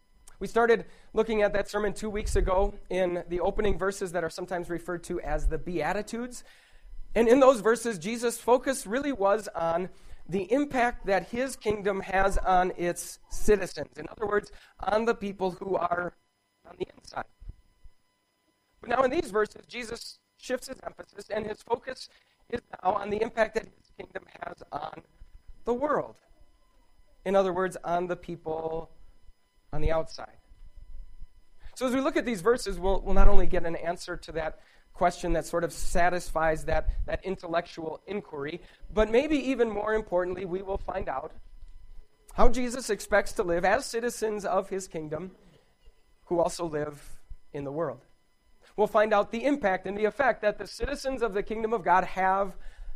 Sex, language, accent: male, English, American